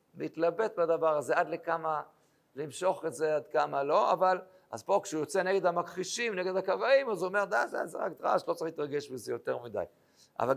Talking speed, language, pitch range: 200 wpm, Hebrew, 145-185 Hz